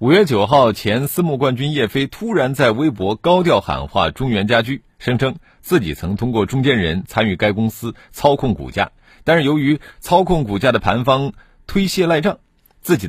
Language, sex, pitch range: Chinese, male, 100-145 Hz